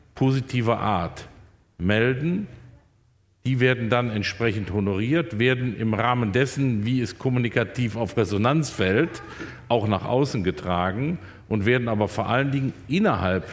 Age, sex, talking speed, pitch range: 50-69, male, 130 wpm, 105-125 Hz